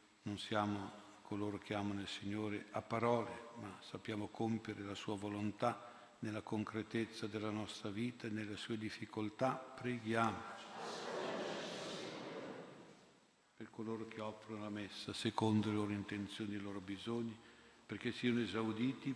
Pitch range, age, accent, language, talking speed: 105-115 Hz, 60-79, native, Italian, 130 wpm